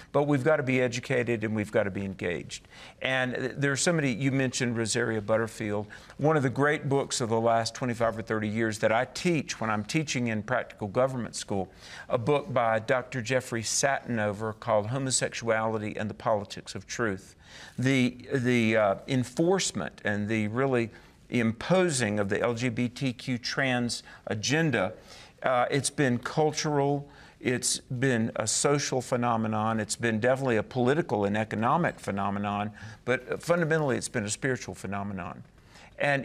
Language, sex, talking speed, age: English, male, 150 wpm, 50-69